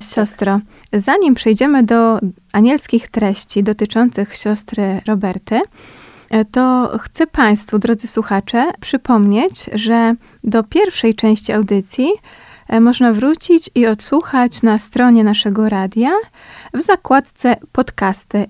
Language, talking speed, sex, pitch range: Polish, 100 wpm, female, 215-255 Hz